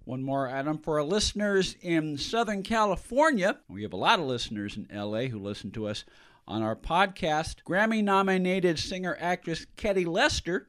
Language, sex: English, male